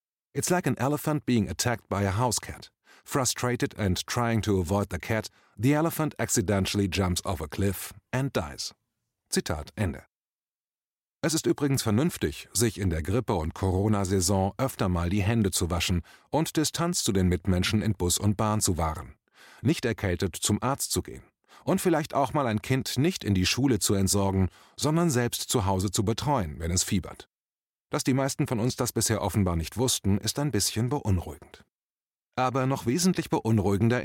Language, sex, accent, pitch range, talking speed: German, male, German, 95-130 Hz, 175 wpm